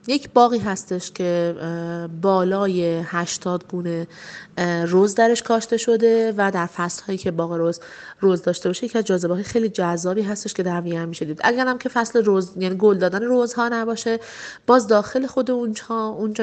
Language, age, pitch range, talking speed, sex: Persian, 30-49, 175-225 Hz, 155 wpm, female